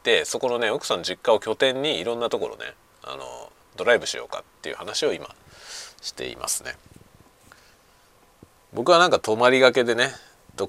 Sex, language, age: male, Japanese, 40-59